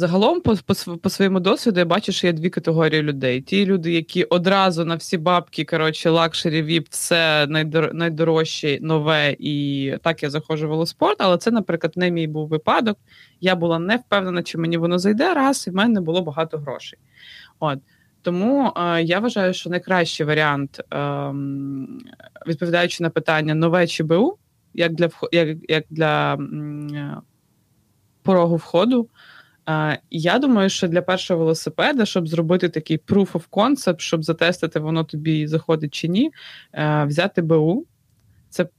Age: 20-39